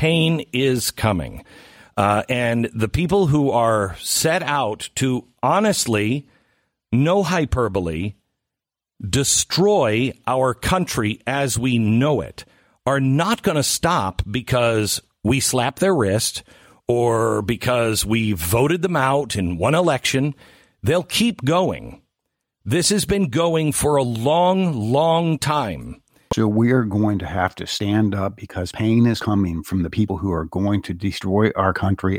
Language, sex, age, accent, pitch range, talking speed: English, male, 50-69, American, 90-125 Hz, 140 wpm